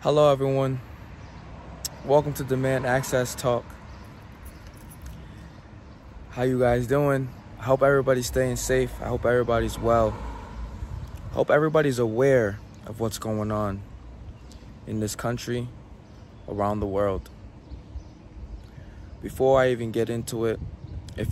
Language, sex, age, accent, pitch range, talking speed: English, male, 20-39, American, 100-120 Hz, 115 wpm